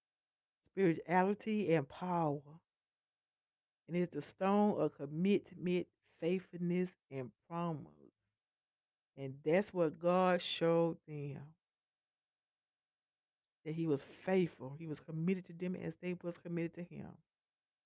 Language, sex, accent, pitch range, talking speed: English, female, American, 165-200 Hz, 110 wpm